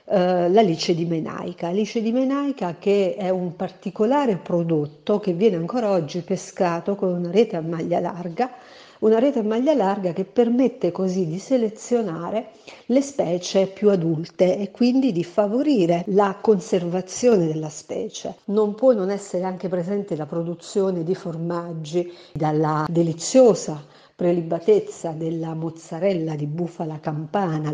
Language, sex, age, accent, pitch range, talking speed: Italian, female, 50-69, native, 170-215 Hz, 135 wpm